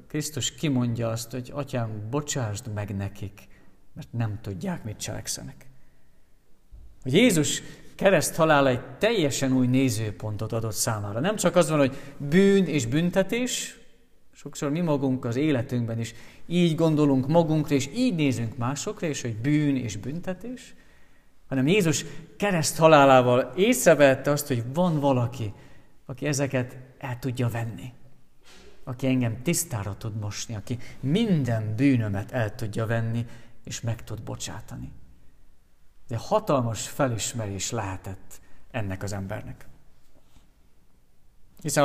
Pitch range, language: 115-150 Hz, Hungarian